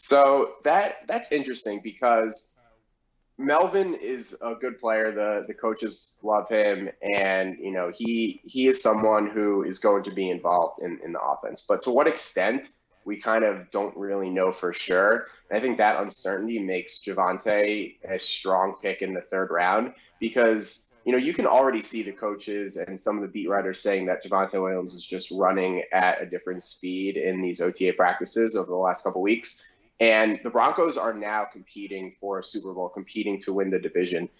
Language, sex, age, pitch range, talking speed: English, male, 20-39, 95-110 Hz, 190 wpm